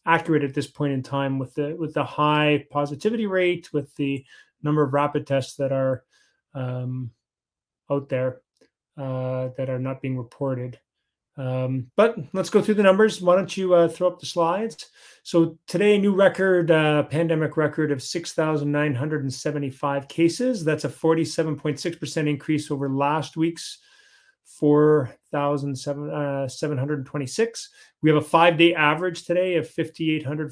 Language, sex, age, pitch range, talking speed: English, male, 30-49, 140-165 Hz, 165 wpm